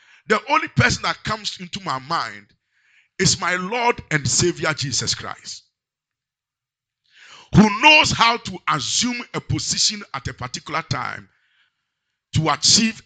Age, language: 50-69, English